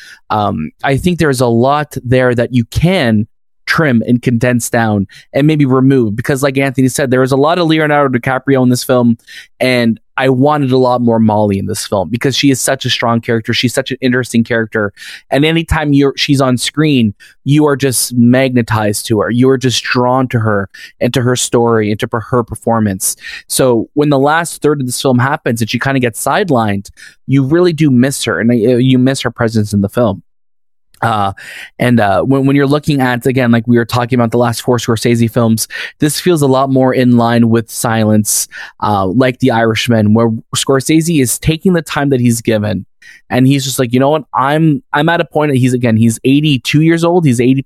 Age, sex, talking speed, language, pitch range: 20-39, male, 215 wpm, English, 115-140 Hz